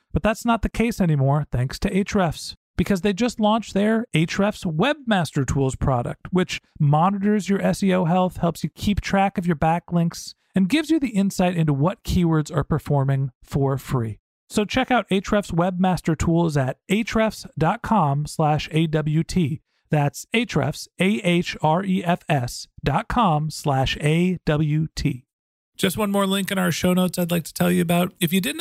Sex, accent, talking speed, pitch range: male, American, 155 wpm, 150-195 Hz